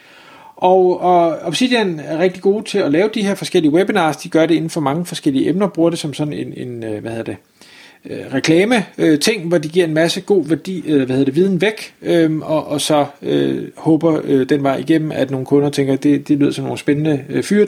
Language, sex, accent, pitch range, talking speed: Danish, male, native, 140-180 Hz, 205 wpm